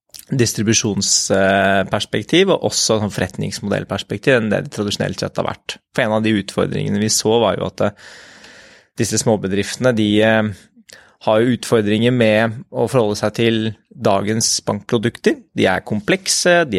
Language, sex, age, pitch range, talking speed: English, male, 20-39, 105-125 Hz, 140 wpm